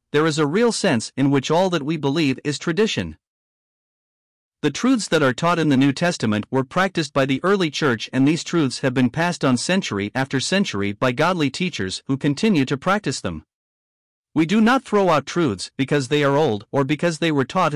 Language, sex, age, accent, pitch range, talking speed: English, male, 50-69, American, 130-175 Hz, 205 wpm